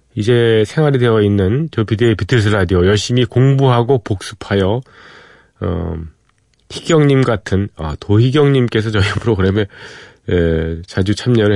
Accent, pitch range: native, 95-125 Hz